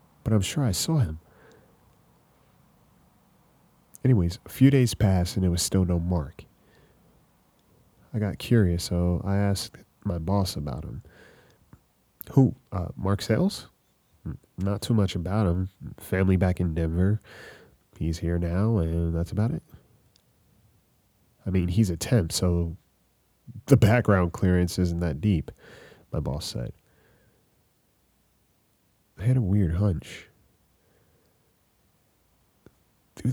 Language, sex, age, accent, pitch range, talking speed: English, male, 30-49, American, 90-110 Hz, 120 wpm